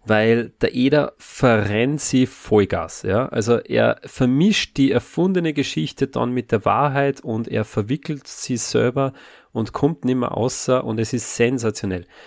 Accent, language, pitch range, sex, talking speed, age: German, German, 115-160 Hz, male, 150 wpm, 30-49